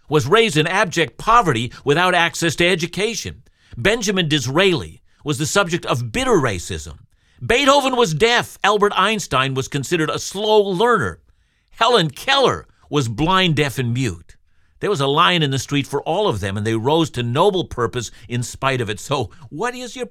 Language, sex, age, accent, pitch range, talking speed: English, male, 50-69, American, 105-160 Hz, 175 wpm